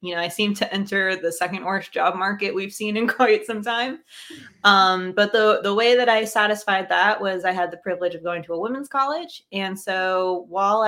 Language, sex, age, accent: English, female, 20-39, American